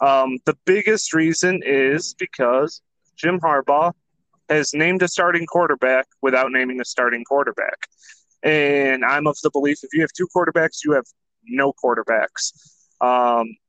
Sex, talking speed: male, 145 wpm